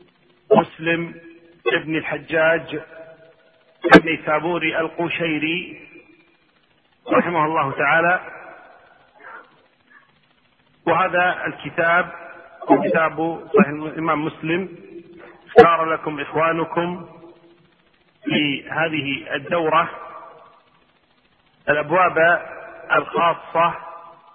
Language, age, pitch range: Arabic, 40-59, 160-175 Hz